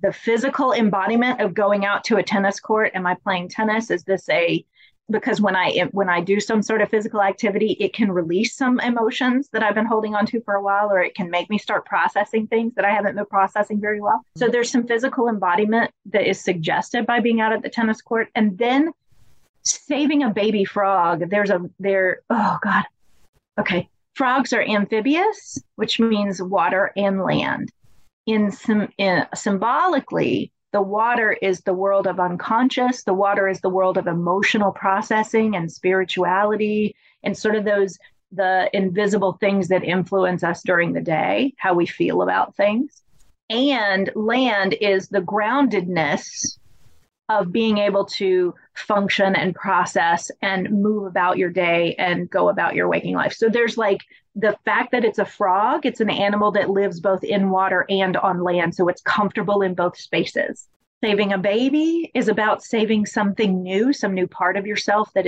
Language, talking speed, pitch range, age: English, 175 wpm, 190-220 Hz, 30-49